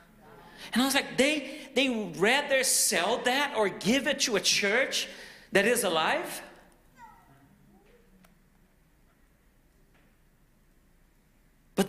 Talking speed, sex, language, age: 95 wpm, male, English, 40-59